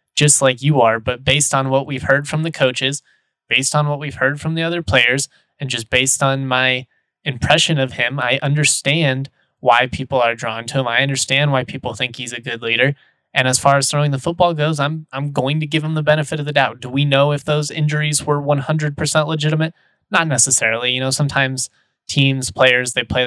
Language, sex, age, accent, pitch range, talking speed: English, male, 20-39, American, 125-145 Hz, 215 wpm